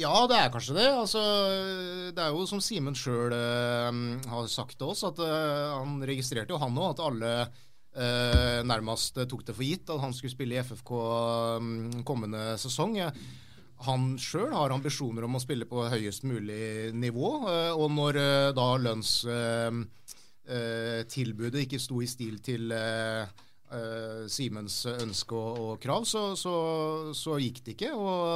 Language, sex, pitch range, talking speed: English, male, 115-145 Hz, 150 wpm